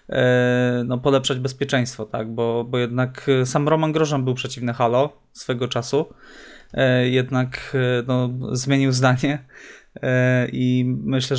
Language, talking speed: Polish, 110 wpm